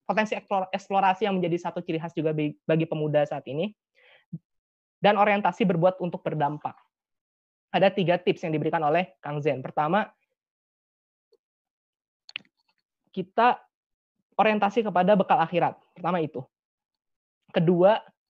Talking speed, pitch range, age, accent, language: 110 wpm, 165-200 Hz, 20-39, native, Indonesian